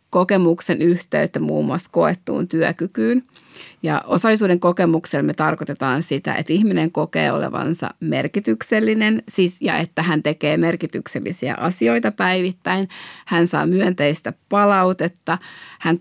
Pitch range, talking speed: 155-185 Hz, 110 wpm